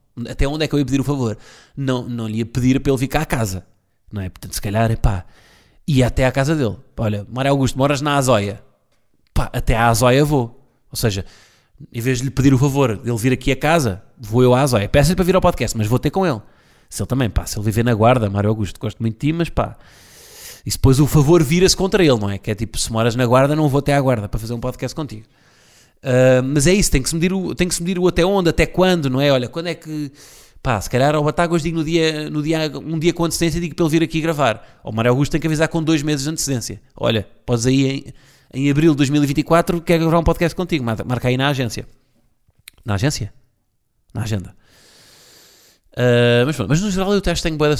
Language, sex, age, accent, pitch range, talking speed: Portuguese, male, 20-39, Portuguese, 115-155 Hz, 255 wpm